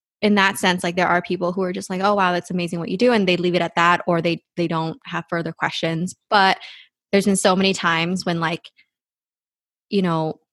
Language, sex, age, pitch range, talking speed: English, female, 20-39, 175-200 Hz, 235 wpm